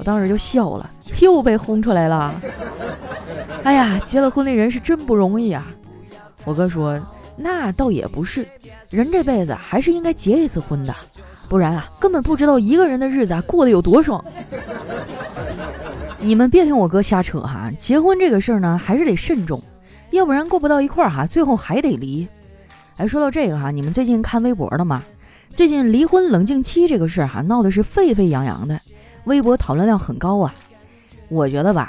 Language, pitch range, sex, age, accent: Chinese, 175-275 Hz, female, 20-39, native